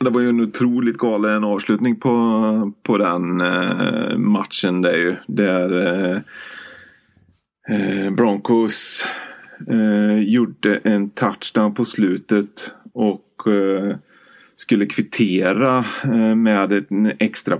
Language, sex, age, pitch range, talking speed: Swedish, male, 30-49, 100-110 Hz, 105 wpm